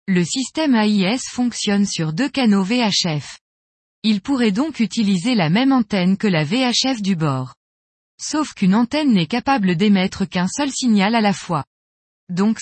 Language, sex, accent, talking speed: French, female, French, 155 wpm